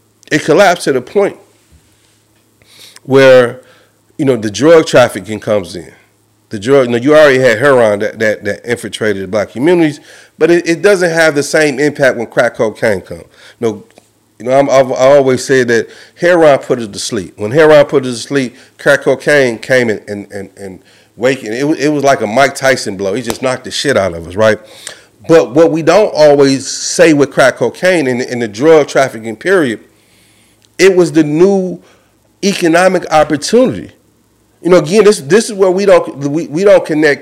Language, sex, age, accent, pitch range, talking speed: English, male, 40-59, American, 110-170 Hz, 195 wpm